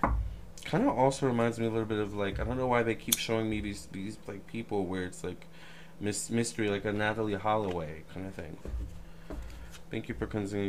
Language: English